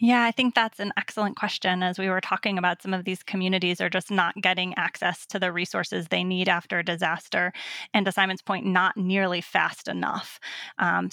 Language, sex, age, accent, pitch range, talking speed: English, female, 20-39, American, 185-220 Hz, 205 wpm